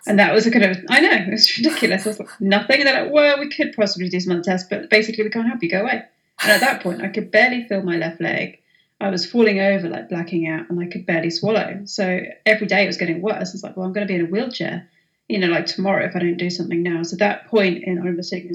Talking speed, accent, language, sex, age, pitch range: 290 wpm, British, English, female, 30-49, 175-200 Hz